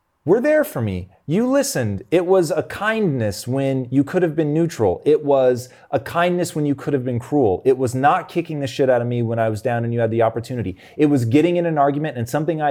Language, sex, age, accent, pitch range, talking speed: English, male, 30-49, American, 105-140 Hz, 250 wpm